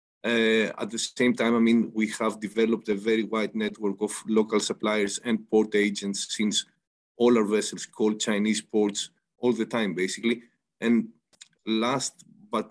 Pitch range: 110-120 Hz